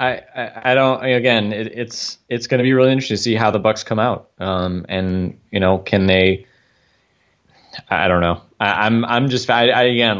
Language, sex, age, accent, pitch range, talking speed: English, male, 20-39, American, 90-115 Hz, 220 wpm